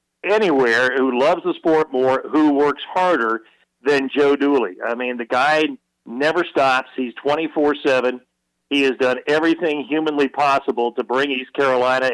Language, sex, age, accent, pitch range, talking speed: English, male, 50-69, American, 130-170 Hz, 150 wpm